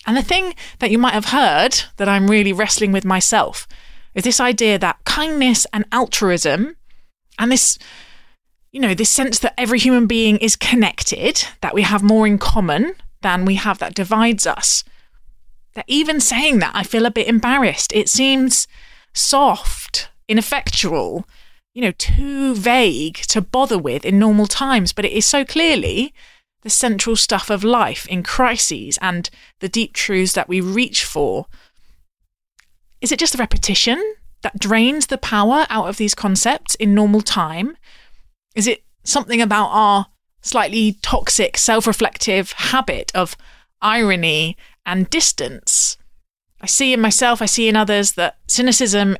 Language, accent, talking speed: English, British, 150 wpm